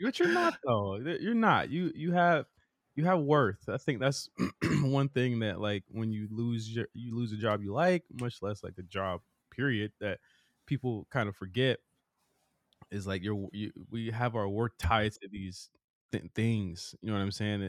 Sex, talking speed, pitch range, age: male, 195 wpm, 100-125 Hz, 20-39